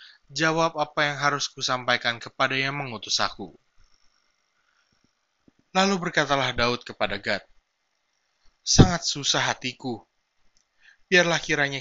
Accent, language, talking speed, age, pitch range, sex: native, Indonesian, 95 wpm, 20-39, 110-145 Hz, male